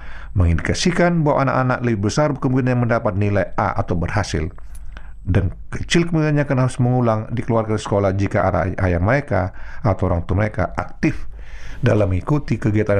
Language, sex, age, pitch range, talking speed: Indonesian, male, 50-69, 85-120 Hz, 150 wpm